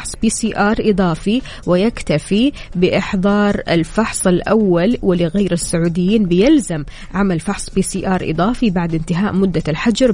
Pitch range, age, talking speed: 175-220 Hz, 20-39, 125 wpm